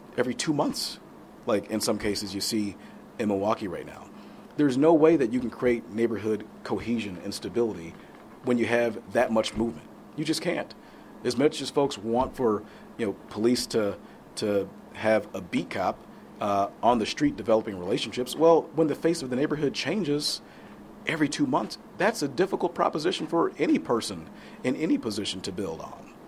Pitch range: 110-145 Hz